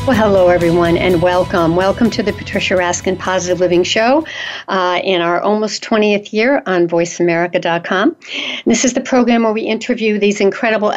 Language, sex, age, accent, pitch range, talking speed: English, female, 60-79, American, 185-240 Hz, 170 wpm